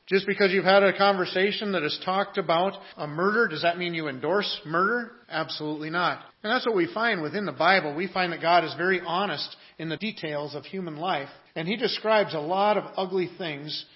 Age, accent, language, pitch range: 40-59, American, English, 150-190 Hz